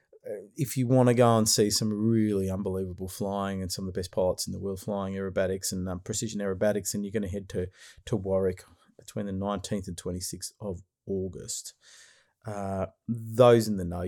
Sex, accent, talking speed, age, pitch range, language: male, Australian, 195 wpm, 30-49, 95-120 Hz, English